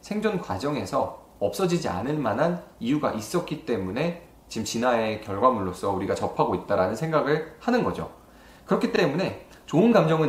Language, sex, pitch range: Korean, male, 120-185 Hz